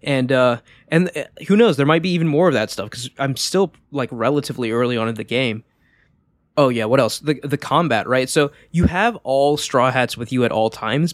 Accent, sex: American, male